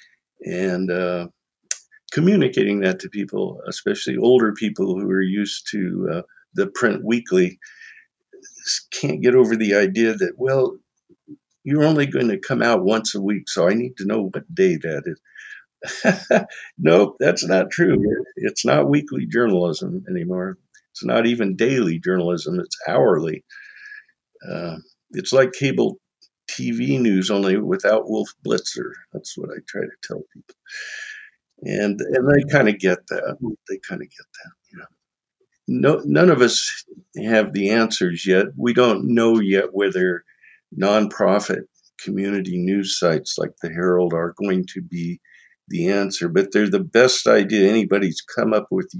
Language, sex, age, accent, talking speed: English, male, 60-79, American, 150 wpm